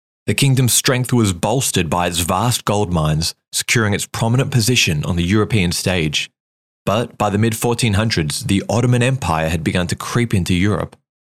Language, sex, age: English, male, 20-39